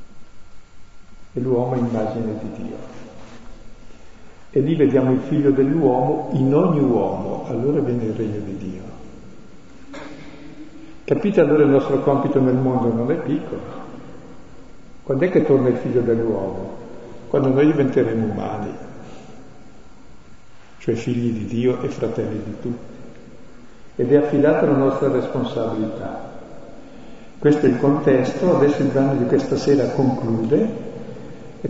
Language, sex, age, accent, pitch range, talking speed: Italian, male, 50-69, native, 115-140 Hz, 125 wpm